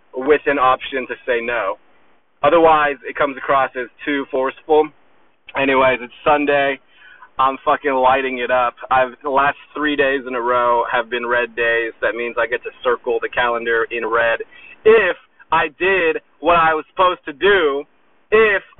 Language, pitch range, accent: English, 130-165 Hz, American